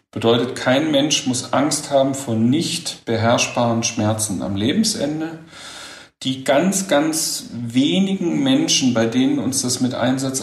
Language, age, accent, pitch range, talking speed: English, 50-69, German, 115-140 Hz, 130 wpm